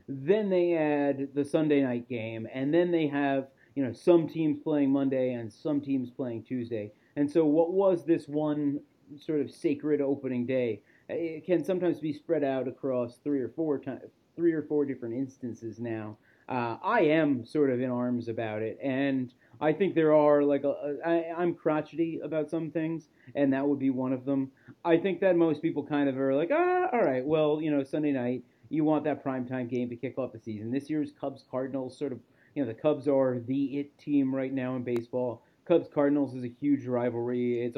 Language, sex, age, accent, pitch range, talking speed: English, male, 30-49, American, 125-155 Hz, 205 wpm